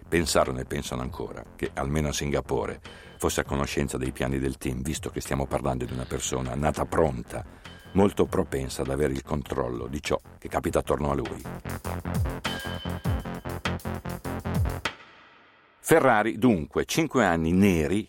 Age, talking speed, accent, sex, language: 60-79, 140 wpm, native, male, Italian